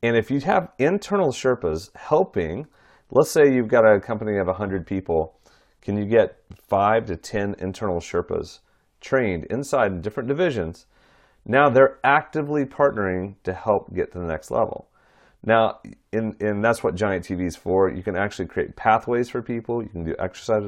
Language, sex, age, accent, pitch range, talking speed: English, male, 40-59, American, 90-115 Hz, 170 wpm